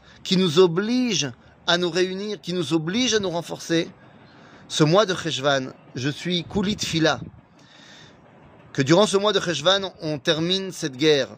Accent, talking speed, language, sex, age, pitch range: French, 160 wpm, French, male, 30-49, 145-190 Hz